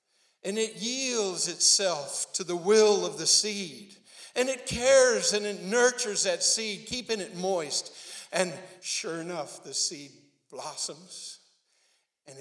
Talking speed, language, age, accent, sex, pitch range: 135 wpm, English, 60-79, American, male, 185-290 Hz